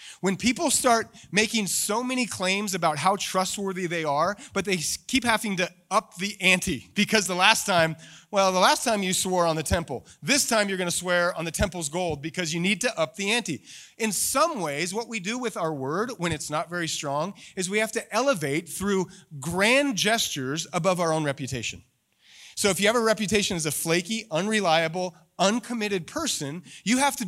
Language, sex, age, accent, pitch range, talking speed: English, male, 30-49, American, 150-210 Hz, 200 wpm